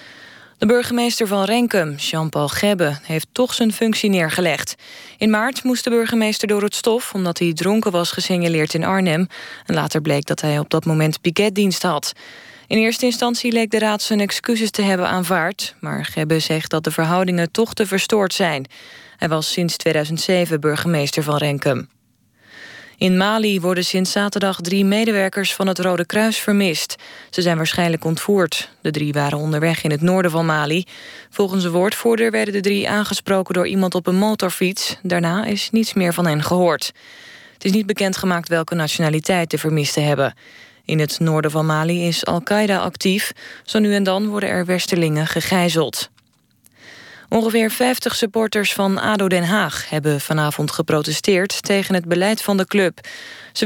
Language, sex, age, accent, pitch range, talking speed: Dutch, female, 20-39, Dutch, 165-205 Hz, 165 wpm